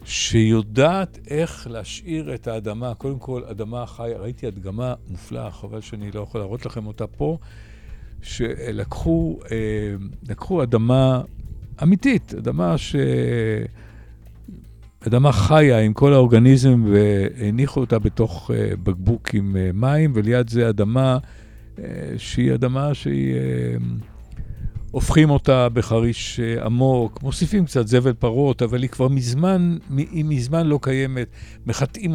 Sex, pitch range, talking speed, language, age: male, 105-130 Hz, 110 wpm, Hebrew, 60-79